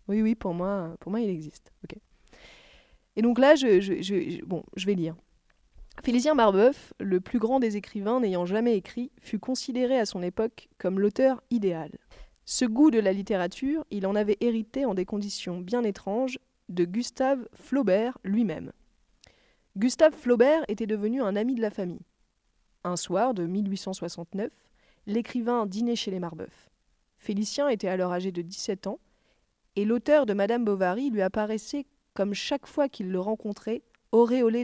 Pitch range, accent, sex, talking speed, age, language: 185-235 Hz, French, female, 155 wpm, 20-39, French